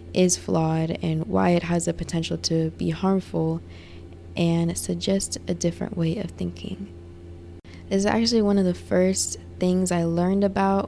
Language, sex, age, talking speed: English, female, 20-39, 160 wpm